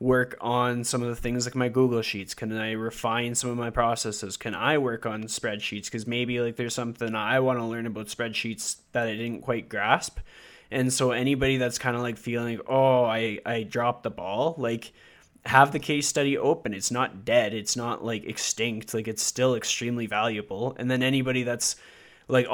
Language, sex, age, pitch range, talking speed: English, male, 20-39, 115-130 Hz, 200 wpm